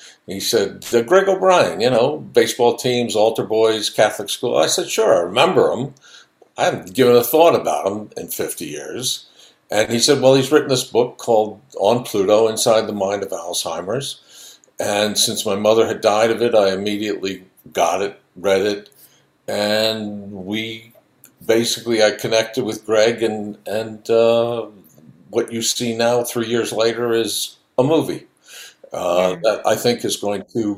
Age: 60-79